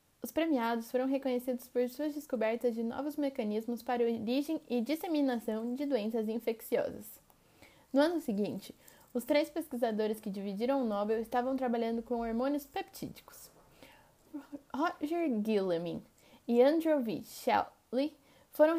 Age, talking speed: 10-29, 125 wpm